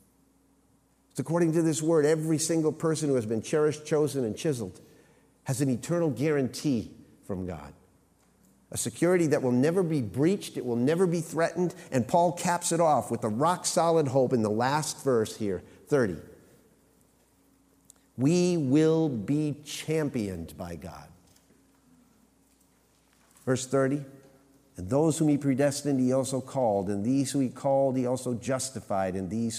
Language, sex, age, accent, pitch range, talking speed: English, male, 50-69, American, 105-150 Hz, 150 wpm